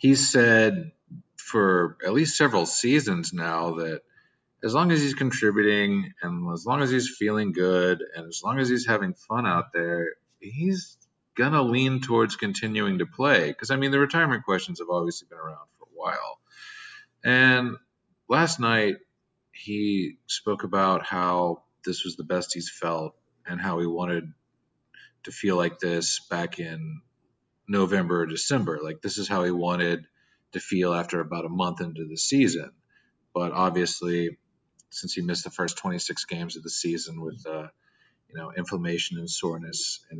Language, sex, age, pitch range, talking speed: English, male, 40-59, 85-130 Hz, 165 wpm